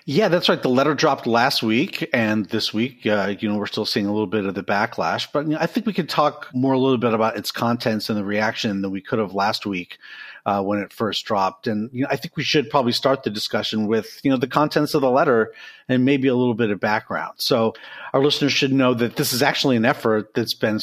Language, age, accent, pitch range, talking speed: English, 40-59, American, 110-140 Hz, 260 wpm